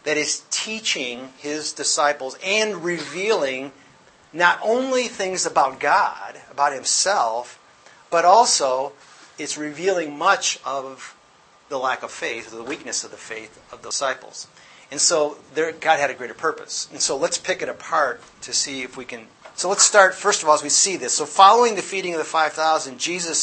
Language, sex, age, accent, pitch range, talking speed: English, male, 40-59, American, 140-185 Hz, 180 wpm